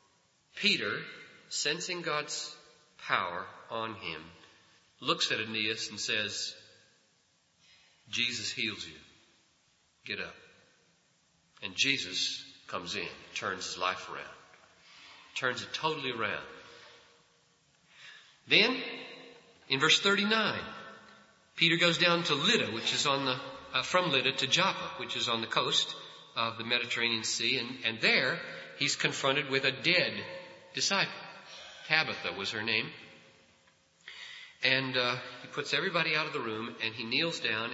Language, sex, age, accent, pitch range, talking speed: English, male, 40-59, American, 120-170 Hz, 130 wpm